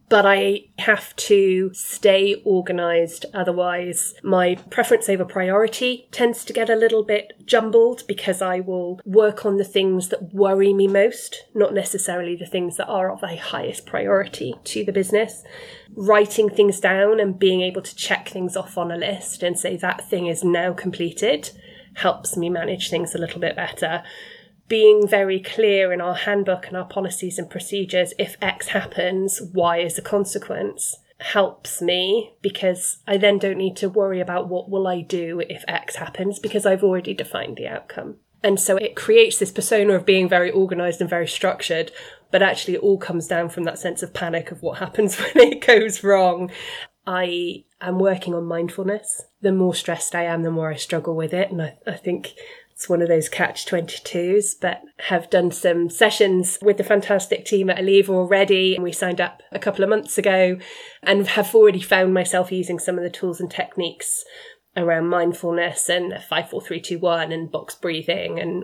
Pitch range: 180-210 Hz